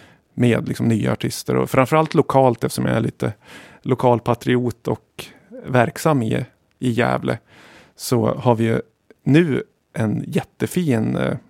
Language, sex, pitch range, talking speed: Swedish, male, 115-130 Hz, 125 wpm